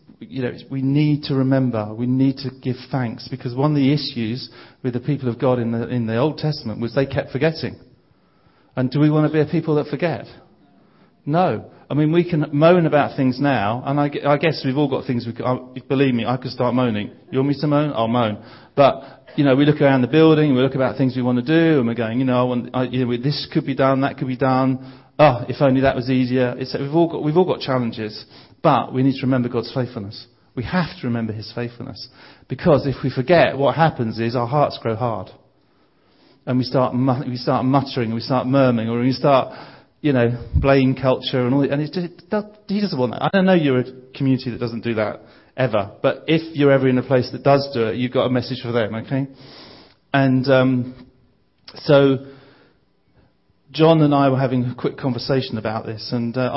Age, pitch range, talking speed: 40-59, 125-145 Hz, 230 wpm